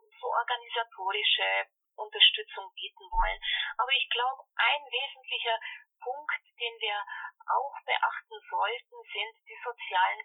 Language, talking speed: German, 110 wpm